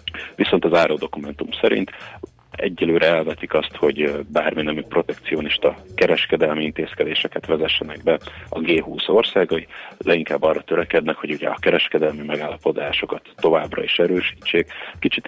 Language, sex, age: Hungarian, male, 30-49